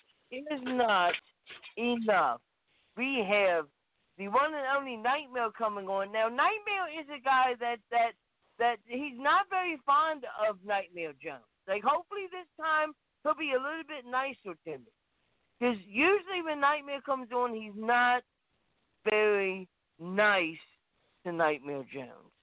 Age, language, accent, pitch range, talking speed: 40-59, English, American, 195-300 Hz, 140 wpm